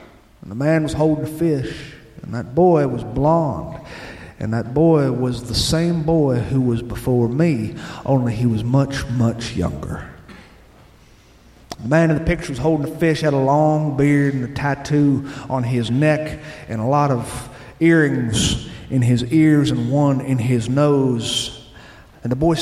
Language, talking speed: English, 165 wpm